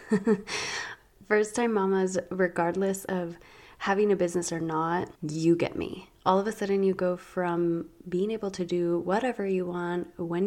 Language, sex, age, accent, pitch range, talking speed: English, female, 20-39, American, 175-210 Hz, 160 wpm